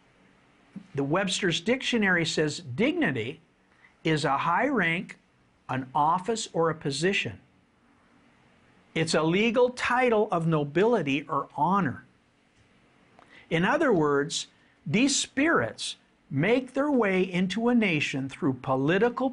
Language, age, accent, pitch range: English, 50-69, American, 160-235 Hz